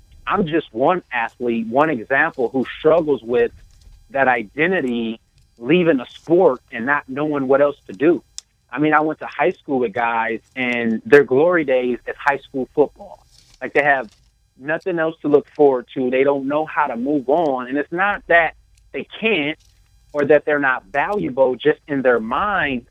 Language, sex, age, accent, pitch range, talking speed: English, male, 30-49, American, 125-165 Hz, 180 wpm